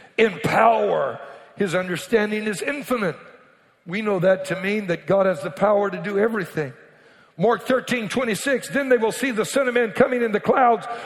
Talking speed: 185 wpm